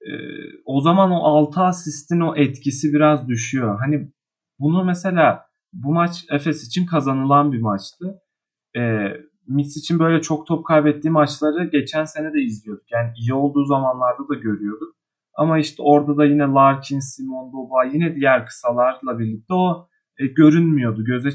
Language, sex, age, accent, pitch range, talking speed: Turkish, male, 30-49, native, 130-165 Hz, 150 wpm